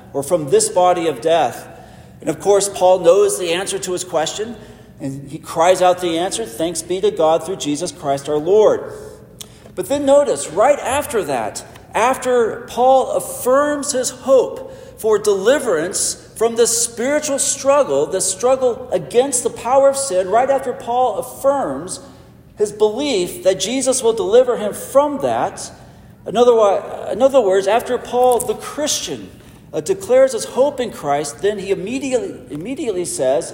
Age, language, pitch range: 40-59, English, 180-275 Hz